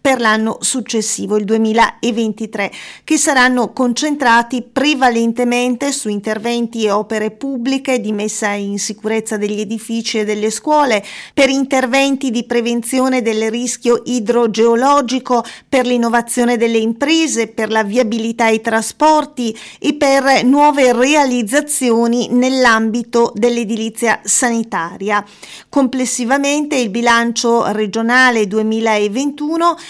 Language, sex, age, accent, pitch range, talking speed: Italian, female, 40-59, native, 220-255 Hz, 100 wpm